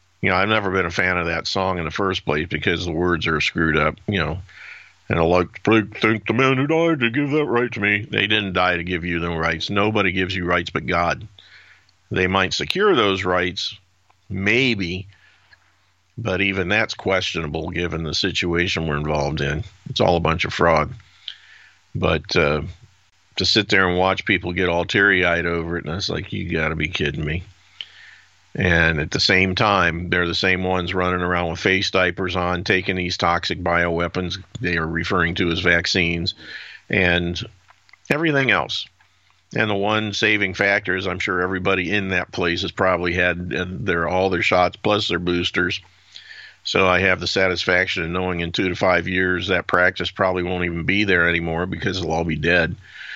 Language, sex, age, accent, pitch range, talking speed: English, male, 50-69, American, 85-95 Hz, 190 wpm